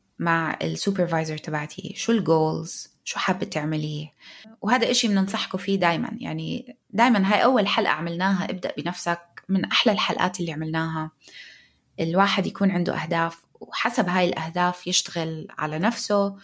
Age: 20-39